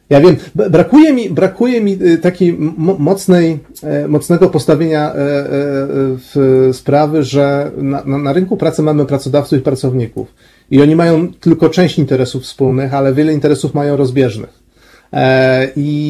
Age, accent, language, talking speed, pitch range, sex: 40-59, native, Polish, 130 wpm, 130-155 Hz, male